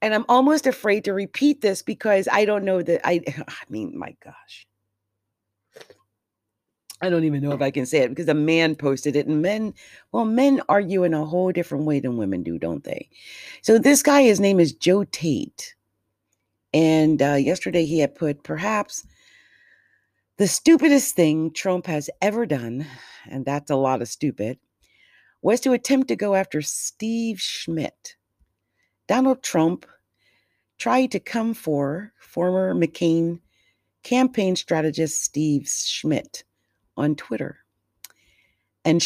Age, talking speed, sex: 40-59, 150 wpm, female